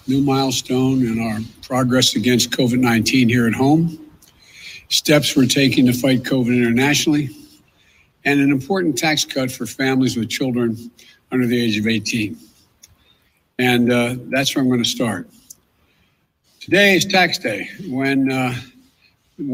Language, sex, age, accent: English, male, 60-79, American